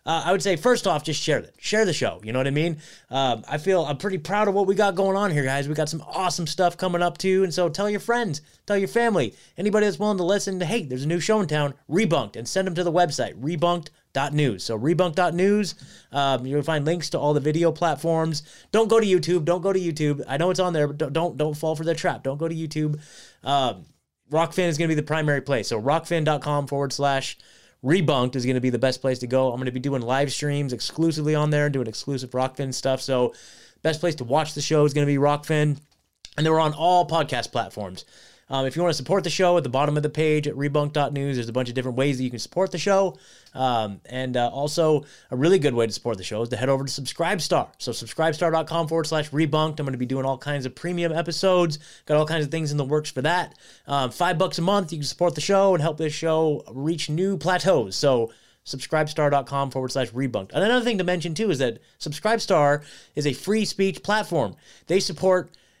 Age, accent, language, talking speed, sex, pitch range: 20-39, American, English, 245 wpm, male, 140-180 Hz